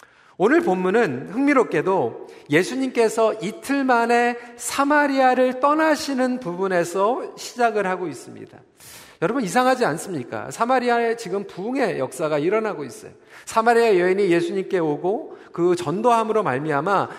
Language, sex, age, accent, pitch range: Korean, male, 40-59, native, 200-265 Hz